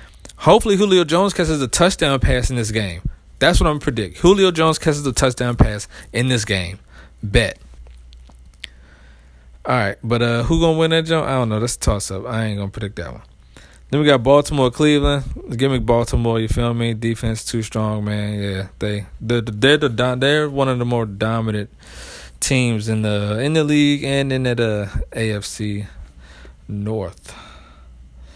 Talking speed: 175 wpm